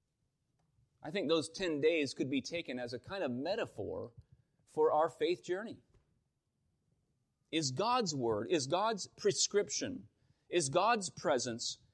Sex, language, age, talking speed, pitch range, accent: male, English, 30-49, 130 wpm, 130-175 Hz, American